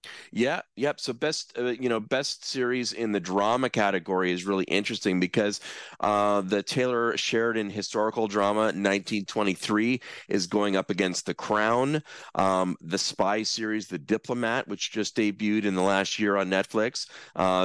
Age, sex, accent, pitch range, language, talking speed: 30-49, male, American, 90-115 Hz, English, 155 wpm